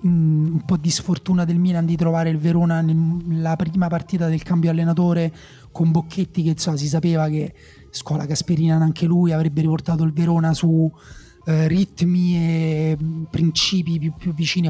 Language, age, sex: Italian, 30-49, male